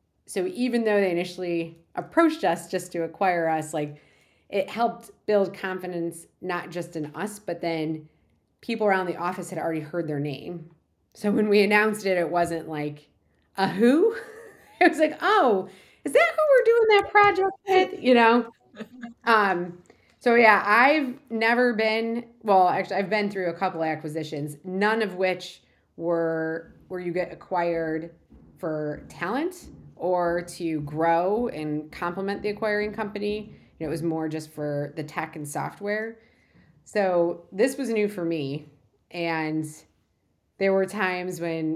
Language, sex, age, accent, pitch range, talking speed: English, female, 30-49, American, 160-210 Hz, 160 wpm